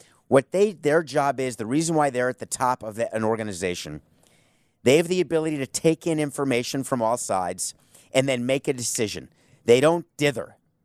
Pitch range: 115-150 Hz